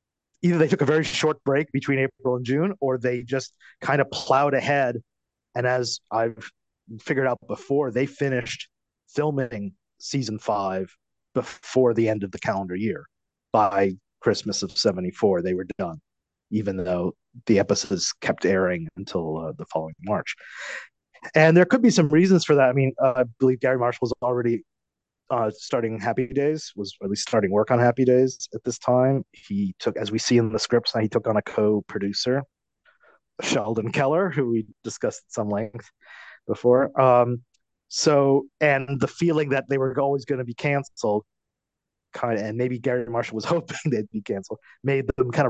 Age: 30-49